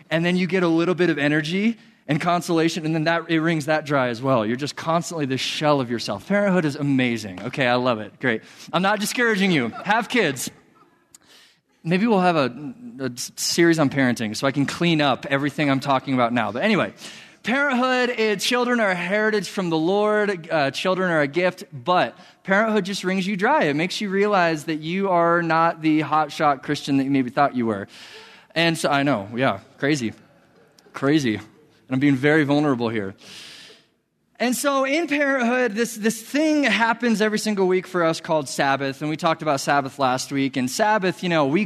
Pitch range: 135-190 Hz